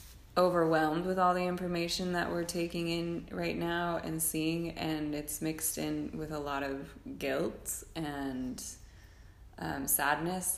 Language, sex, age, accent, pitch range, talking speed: English, female, 20-39, American, 135-155 Hz, 140 wpm